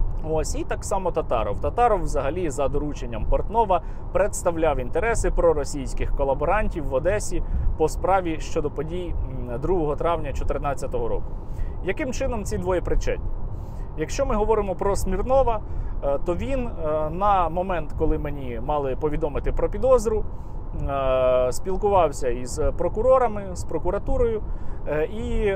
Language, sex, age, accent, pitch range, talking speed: Russian, male, 30-49, native, 140-205 Hz, 115 wpm